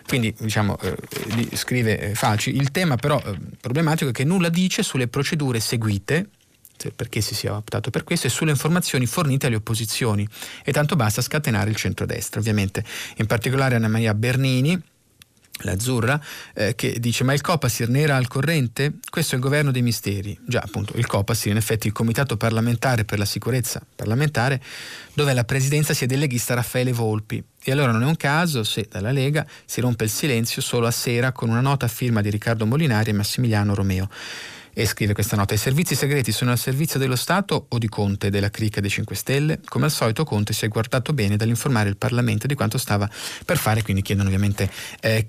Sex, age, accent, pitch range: male, 30-49, native, 110-135 Hz